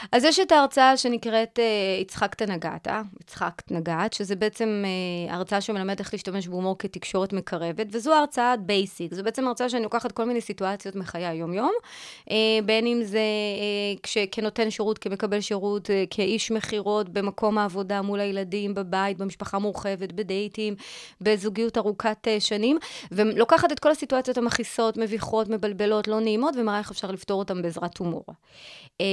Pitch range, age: 200-230 Hz, 30-49